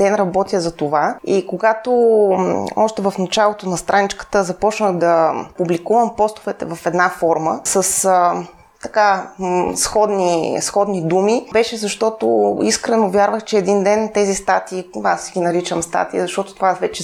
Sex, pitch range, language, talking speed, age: female, 180-215 Hz, Bulgarian, 135 wpm, 20-39